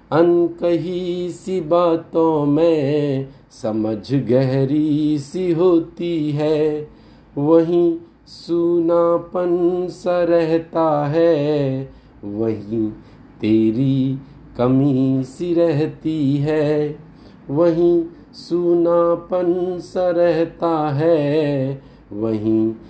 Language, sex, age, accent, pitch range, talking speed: Hindi, male, 50-69, native, 135-170 Hz, 70 wpm